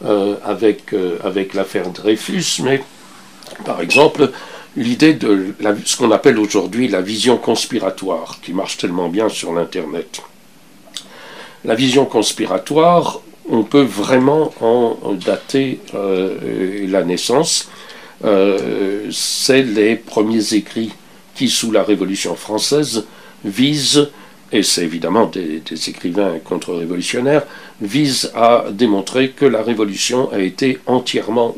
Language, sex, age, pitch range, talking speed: French, male, 60-79, 100-130 Hz, 120 wpm